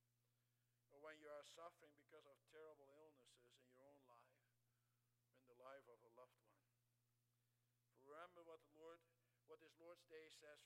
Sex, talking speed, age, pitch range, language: male, 160 wpm, 60-79, 120-155 Hz, English